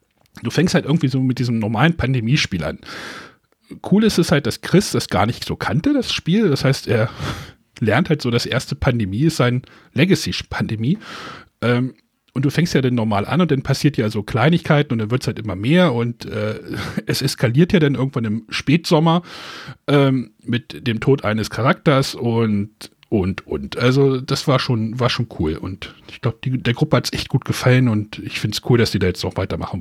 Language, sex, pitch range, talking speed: German, male, 110-155 Hz, 200 wpm